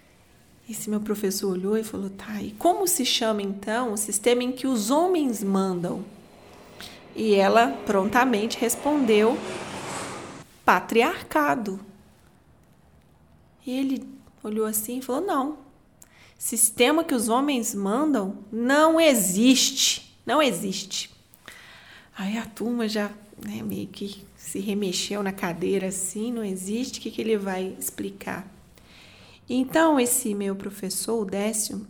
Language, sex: Portuguese, female